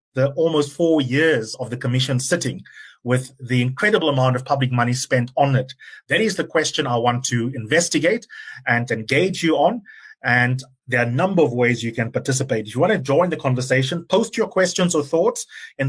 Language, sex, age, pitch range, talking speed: English, male, 30-49, 125-150 Hz, 200 wpm